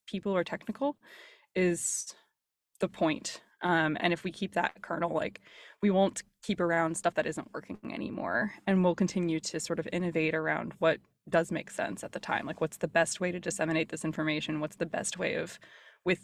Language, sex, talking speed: English, female, 195 wpm